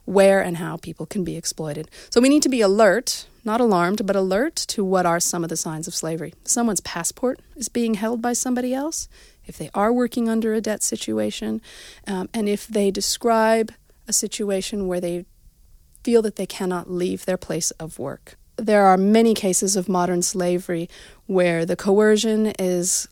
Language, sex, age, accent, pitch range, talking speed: English, female, 40-59, American, 170-215 Hz, 185 wpm